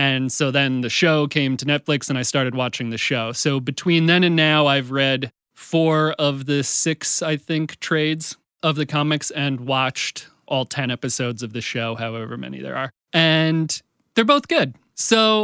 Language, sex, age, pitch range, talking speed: English, male, 30-49, 125-155 Hz, 185 wpm